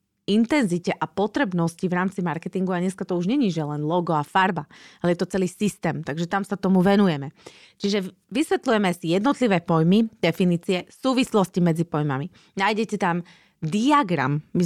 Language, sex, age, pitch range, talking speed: Slovak, female, 30-49, 170-215 Hz, 160 wpm